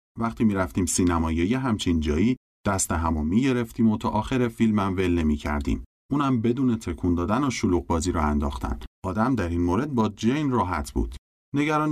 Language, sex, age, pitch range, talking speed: Persian, male, 30-49, 80-115 Hz, 185 wpm